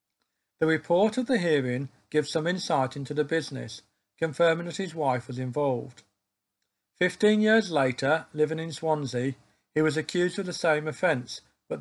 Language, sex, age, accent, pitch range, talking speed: English, male, 50-69, British, 130-175 Hz, 160 wpm